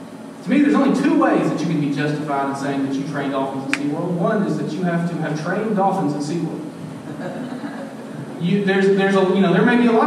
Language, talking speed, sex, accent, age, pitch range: English, 245 wpm, male, American, 30-49, 170-245 Hz